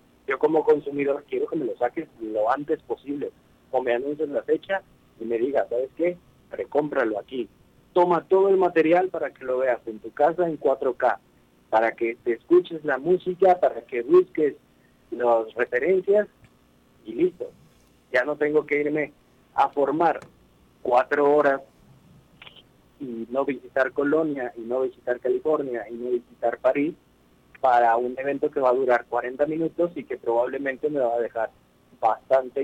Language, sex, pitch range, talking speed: Spanish, male, 120-165 Hz, 160 wpm